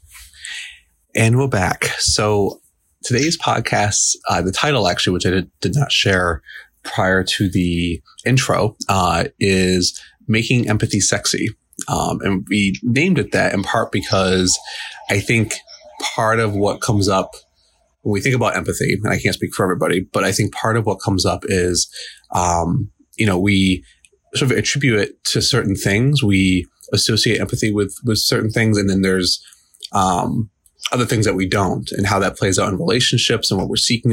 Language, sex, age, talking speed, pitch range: English, male, 30-49, 170 wpm, 95-110 Hz